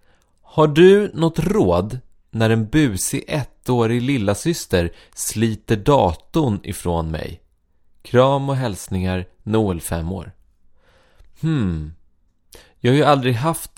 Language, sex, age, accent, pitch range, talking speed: English, male, 30-49, Swedish, 100-145 Hz, 115 wpm